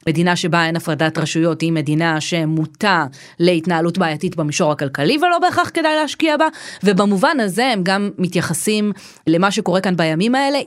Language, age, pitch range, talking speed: Hebrew, 30-49, 170-225 Hz, 150 wpm